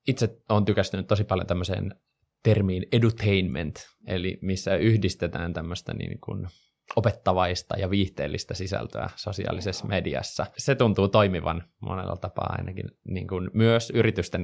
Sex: male